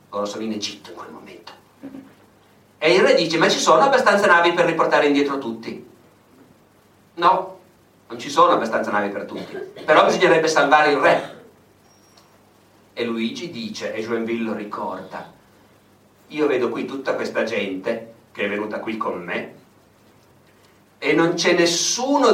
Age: 50-69